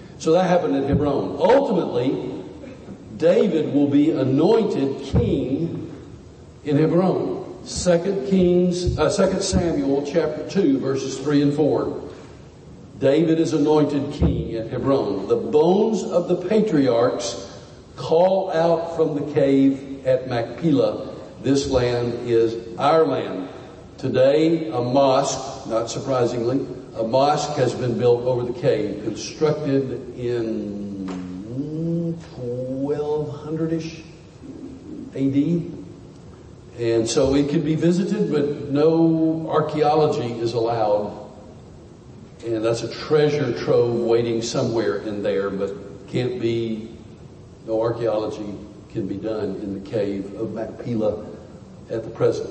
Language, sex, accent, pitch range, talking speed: English, male, American, 115-155 Hz, 115 wpm